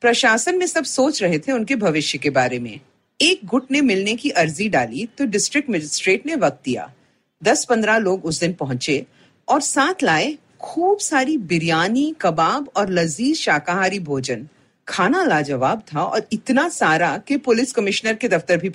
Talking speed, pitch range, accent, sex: 110 wpm, 165-275 Hz, native, female